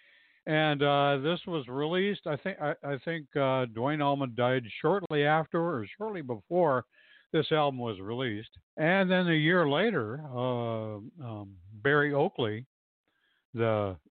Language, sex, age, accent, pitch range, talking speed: English, male, 60-79, American, 115-155 Hz, 140 wpm